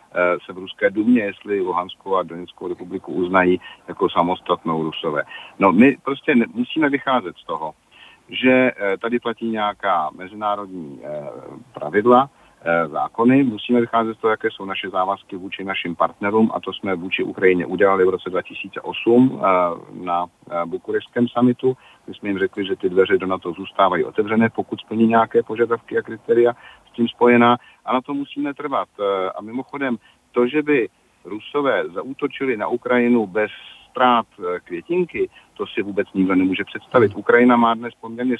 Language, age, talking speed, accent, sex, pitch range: Czech, 50-69, 150 wpm, native, male, 105-125 Hz